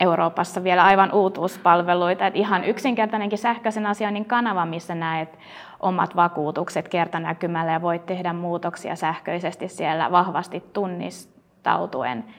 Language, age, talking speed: Finnish, 20-39, 105 wpm